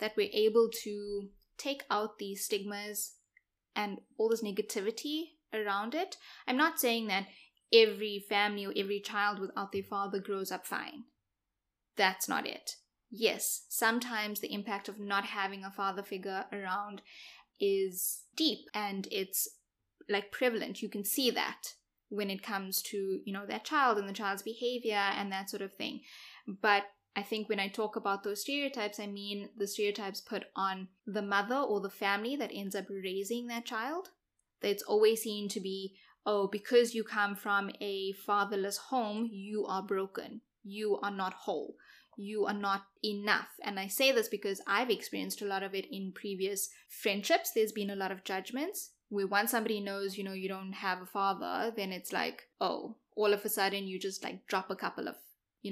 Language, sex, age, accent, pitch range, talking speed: English, female, 10-29, Indian, 195-220 Hz, 180 wpm